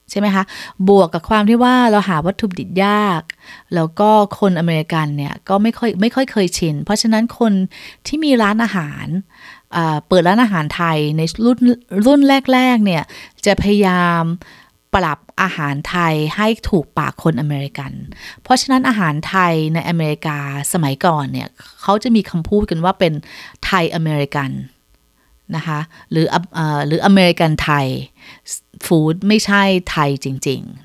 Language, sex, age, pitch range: Thai, female, 20-39, 150-200 Hz